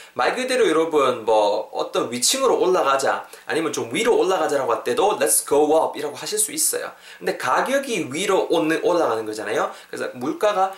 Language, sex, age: Korean, male, 20-39